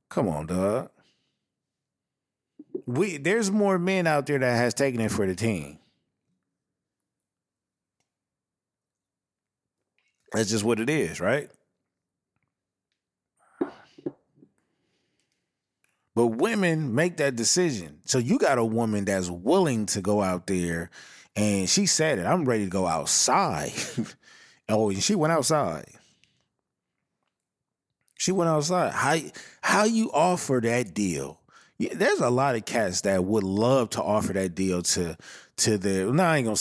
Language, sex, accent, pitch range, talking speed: English, male, American, 100-155 Hz, 135 wpm